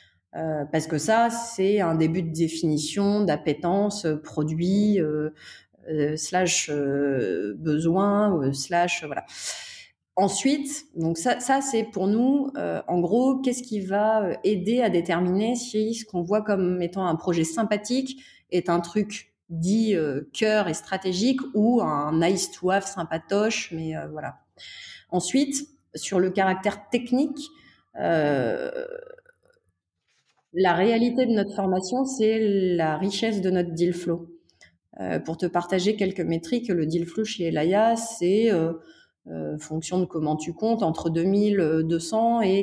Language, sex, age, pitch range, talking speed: French, female, 30-49, 160-220 Hz, 140 wpm